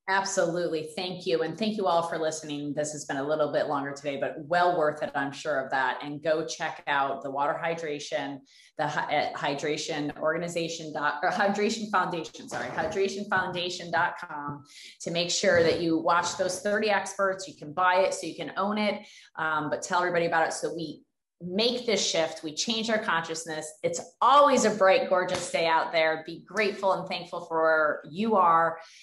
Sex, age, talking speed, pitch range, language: female, 30-49, 185 wpm, 145-180 Hz, English